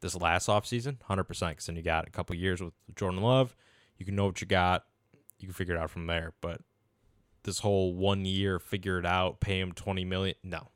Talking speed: 225 wpm